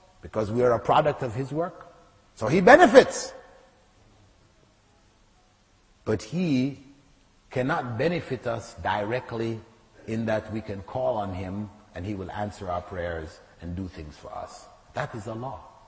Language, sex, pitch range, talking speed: English, male, 105-135 Hz, 145 wpm